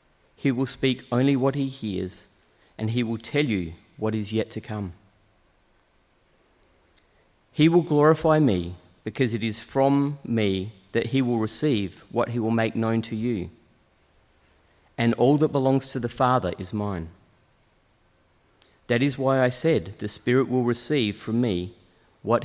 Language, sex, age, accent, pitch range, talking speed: English, male, 40-59, Australian, 90-135 Hz, 155 wpm